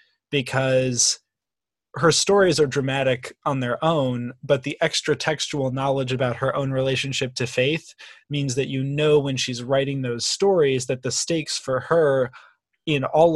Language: English